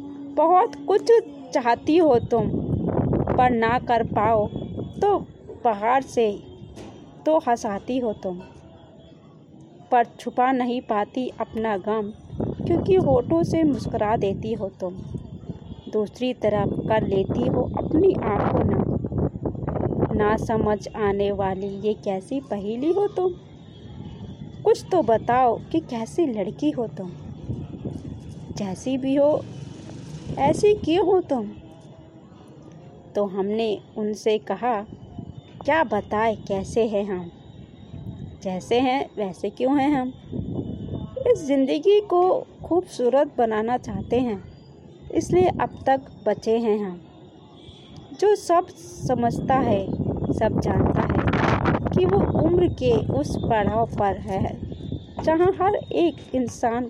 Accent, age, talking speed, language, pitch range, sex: native, 20-39, 120 wpm, Hindi, 200-285 Hz, female